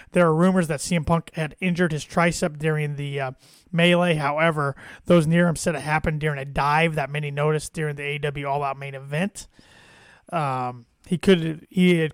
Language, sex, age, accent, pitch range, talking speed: English, male, 30-49, American, 140-170 Hz, 190 wpm